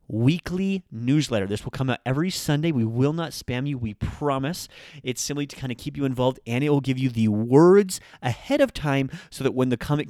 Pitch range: 110-140 Hz